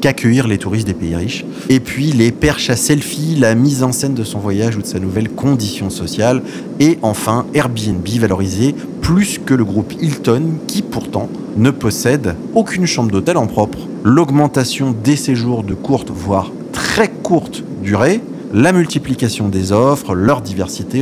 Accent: French